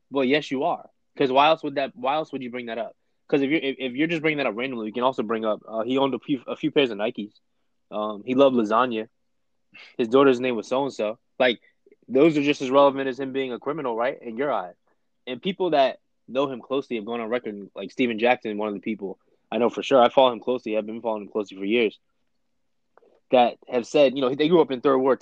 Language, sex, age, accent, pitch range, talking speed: English, male, 20-39, American, 115-135 Hz, 265 wpm